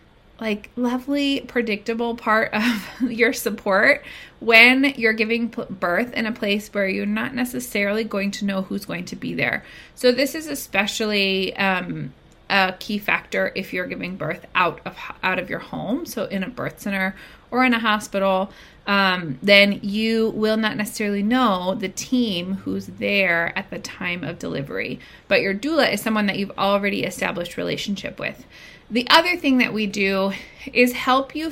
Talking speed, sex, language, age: 170 wpm, female, English, 30-49